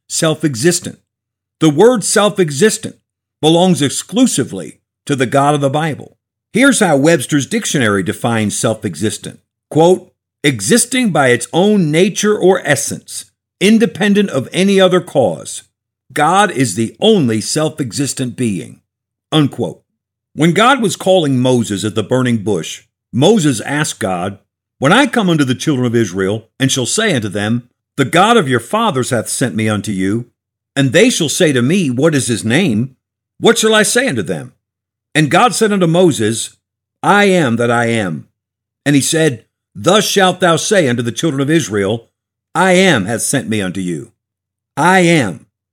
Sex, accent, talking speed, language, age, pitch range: male, American, 155 wpm, English, 50-69, 110-180 Hz